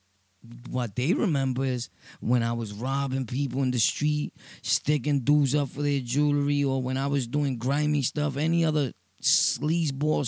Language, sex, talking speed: English, male, 170 wpm